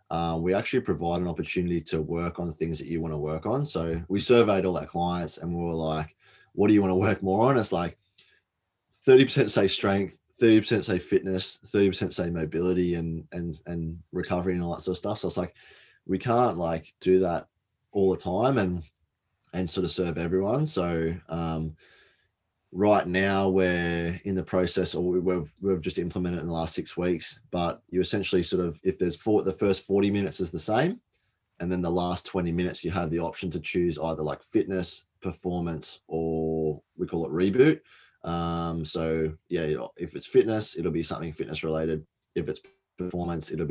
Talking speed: 195 wpm